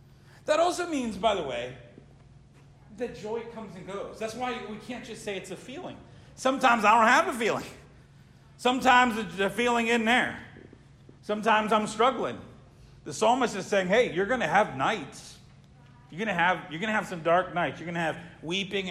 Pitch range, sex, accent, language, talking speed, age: 135-195 Hz, male, American, English, 195 wpm, 40-59